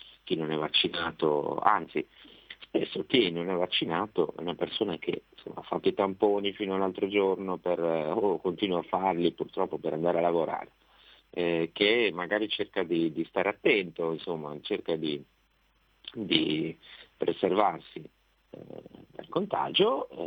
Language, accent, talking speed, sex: Italian, native, 140 wpm, male